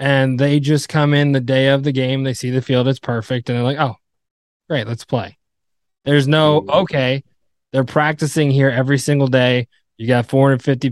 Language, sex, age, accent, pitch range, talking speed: English, male, 20-39, American, 115-140 Hz, 190 wpm